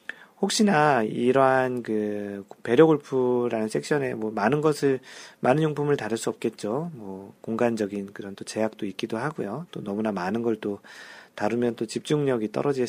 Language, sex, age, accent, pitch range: Korean, male, 40-59, native, 105-145 Hz